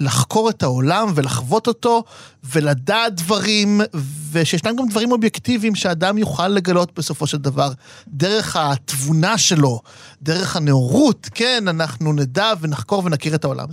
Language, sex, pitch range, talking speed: Hebrew, male, 150-215 Hz, 125 wpm